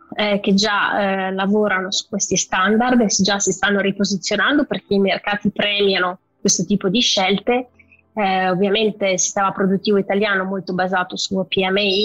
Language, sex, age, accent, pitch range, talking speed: Italian, female, 20-39, native, 190-205 Hz, 160 wpm